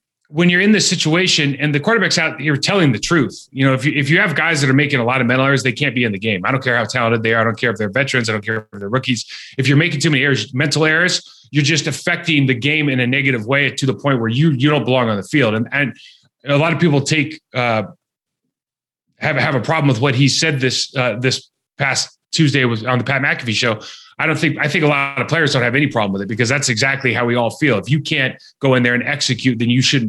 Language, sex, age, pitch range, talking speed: English, male, 30-49, 125-150 Hz, 285 wpm